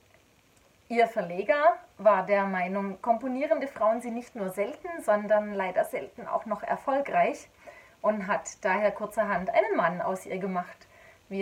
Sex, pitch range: female, 195-265 Hz